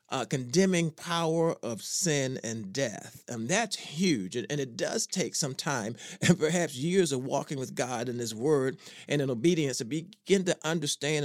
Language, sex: English, male